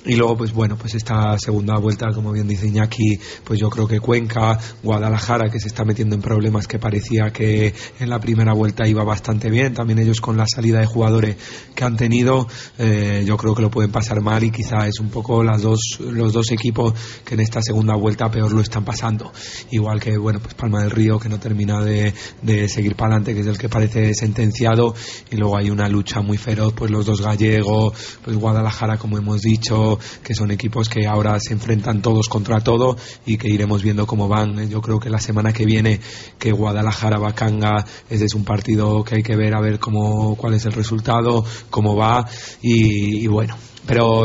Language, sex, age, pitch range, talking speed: Spanish, male, 30-49, 110-115 Hz, 210 wpm